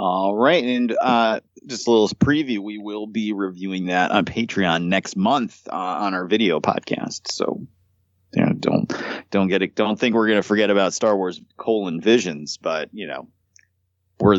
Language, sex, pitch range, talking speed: English, male, 95-130 Hz, 190 wpm